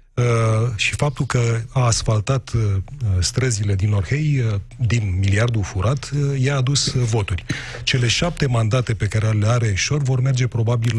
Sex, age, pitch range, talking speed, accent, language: male, 30-49, 105-125 Hz, 165 wpm, native, Romanian